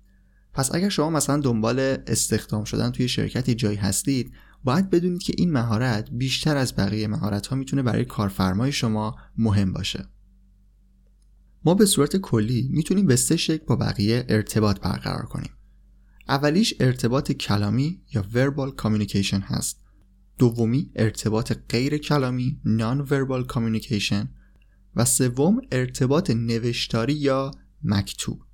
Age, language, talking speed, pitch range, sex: 20-39, Persian, 125 wpm, 105-140 Hz, male